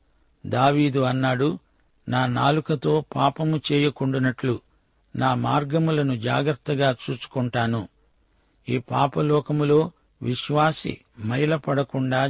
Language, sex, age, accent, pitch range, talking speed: Telugu, male, 60-79, native, 130-150 Hz, 70 wpm